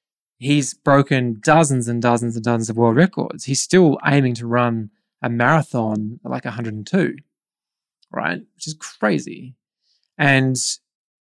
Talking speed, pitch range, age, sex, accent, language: 130 wpm, 120-180 Hz, 20-39, male, Australian, English